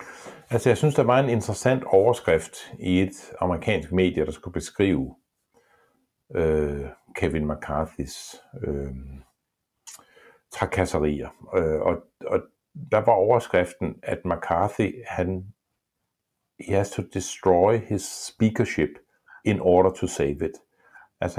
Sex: male